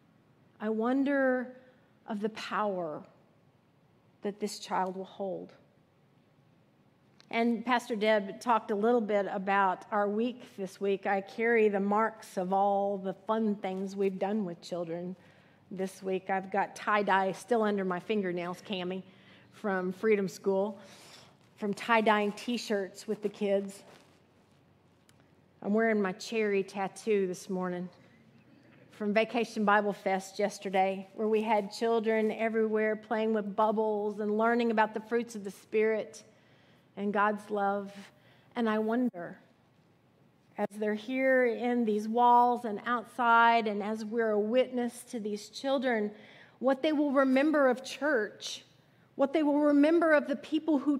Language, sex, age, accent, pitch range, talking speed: English, female, 40-59, American, 200-235 Hz, 140 wpm